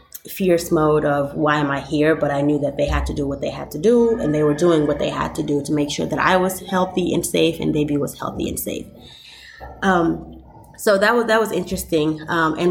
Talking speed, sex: 250 wpm, female